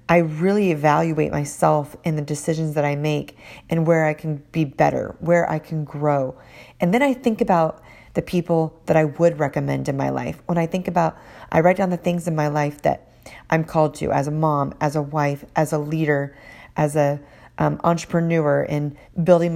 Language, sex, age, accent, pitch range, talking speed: English, female, 30-49, American, 145-165 Hz, 200 wpm